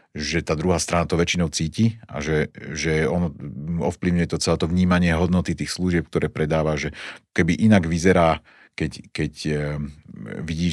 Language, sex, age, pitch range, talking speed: Slovak, male, 40-59, 75-85 Hz, 155 wpm